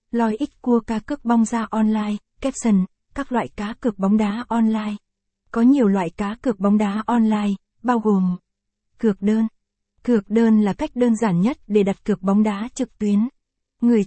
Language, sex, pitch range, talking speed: Vietnamese, female, 205-235 Hz, 185 wpm